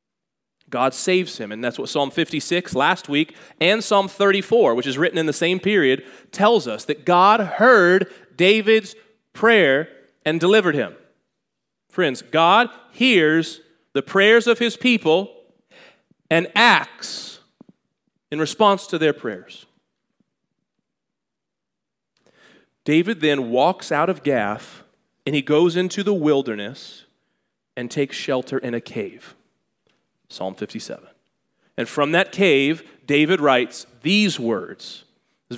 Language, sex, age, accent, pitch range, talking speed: English, male, 30-49, American, 130-180 Hz, 125 wpm